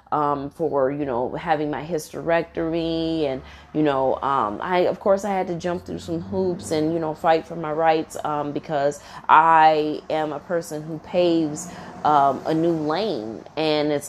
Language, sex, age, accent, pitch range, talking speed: English, female, 30-49, American, 150-190 Hz, 185 wpm